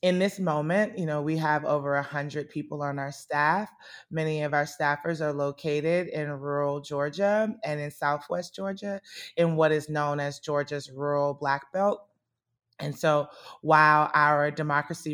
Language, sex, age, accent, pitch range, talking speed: English, female, 20-39, American, 145-165 Hz, 160 wpm